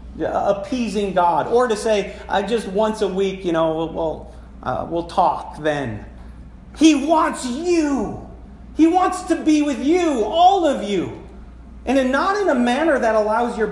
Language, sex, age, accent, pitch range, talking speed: English, male, 40-59, American, 130-205 Hz, 175 wpm